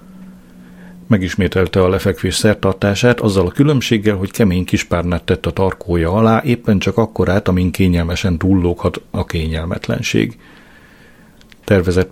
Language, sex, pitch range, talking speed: Hungarian, male, 90-105 Hz, 125 wpm